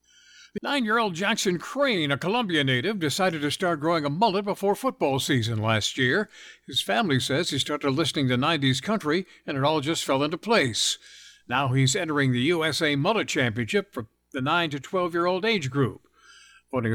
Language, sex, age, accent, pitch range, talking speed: English, male, 60-79, American, 125-170 Hz, 170 wpm